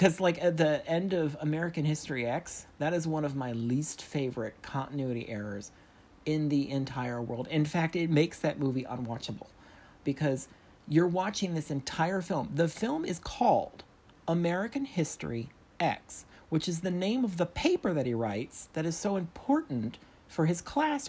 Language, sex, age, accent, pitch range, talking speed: English, male, 40-59, American, 145-220 Hz, 170 wpm